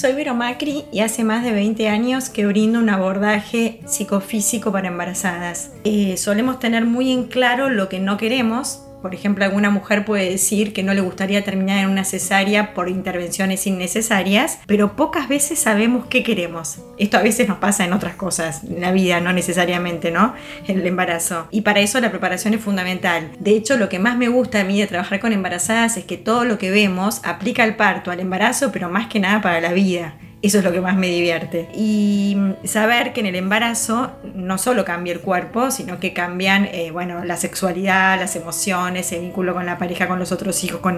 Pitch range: 180-220 Hz